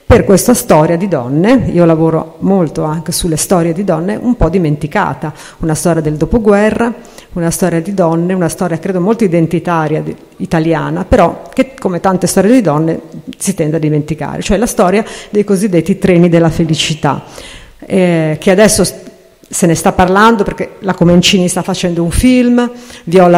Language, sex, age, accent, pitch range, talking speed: Italian, female, 50-69, native, 165-200 Hz, 165 wpm